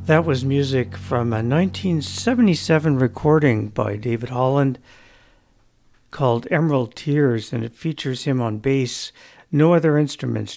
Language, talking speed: English, 125 wpm